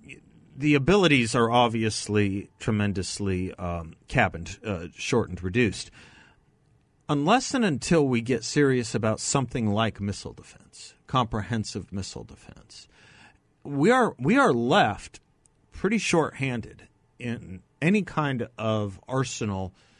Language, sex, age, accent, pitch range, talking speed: English, male, 40-59, American, 105-135 Hz, 110 wpm